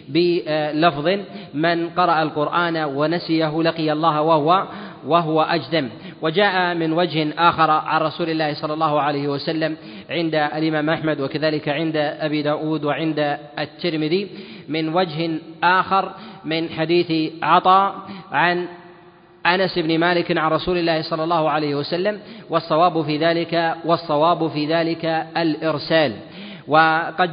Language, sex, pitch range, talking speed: Arabic, male, 155-175 Hz, 120 wpm